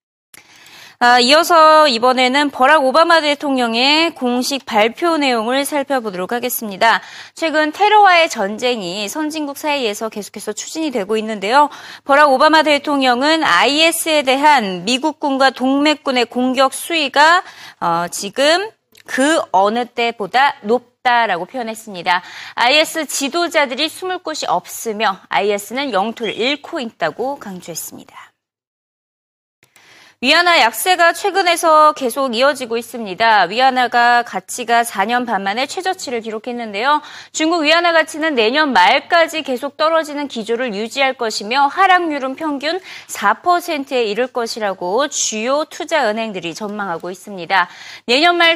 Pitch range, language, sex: 230-310 Hz, Korean, female